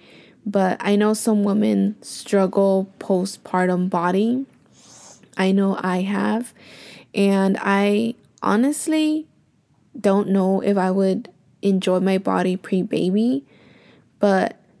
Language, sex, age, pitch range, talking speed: English, female, 10-29, 190-220 Hz, 100 wpm